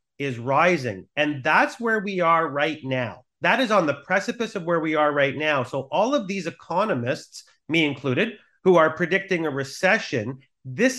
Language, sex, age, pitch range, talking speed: English, male, 40-59, 145-205 Hz, 180 wpm